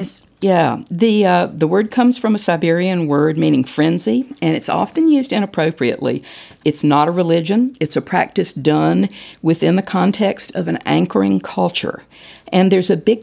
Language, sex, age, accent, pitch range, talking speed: English, female, 50-69, American, 145-195 Hz, 165 wpm